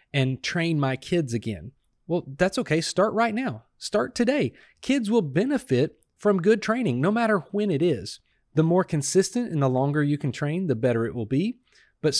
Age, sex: 30-49, male